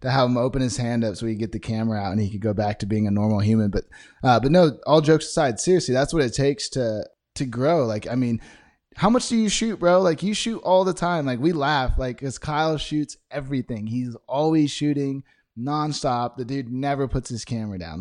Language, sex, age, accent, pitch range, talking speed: English, male, 20-39, American, 110-140 Hz, 245 wpm